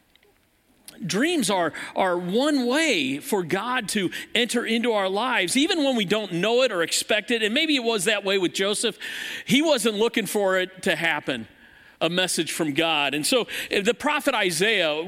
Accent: American